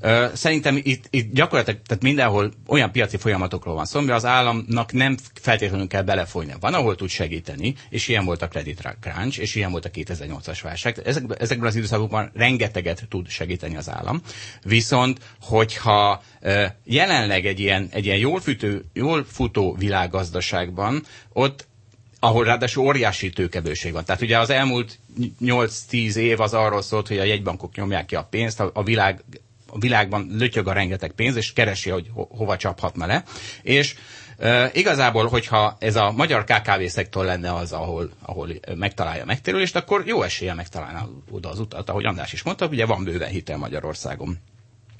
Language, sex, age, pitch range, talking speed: Hungarian, male, 30-49, 95-125 Hz, 165 wpm